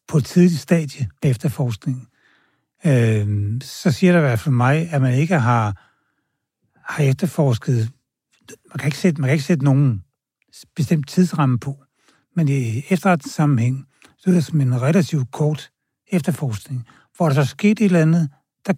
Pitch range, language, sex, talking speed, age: 135-165 Hz, Danish, male, 160 wpm, 60-79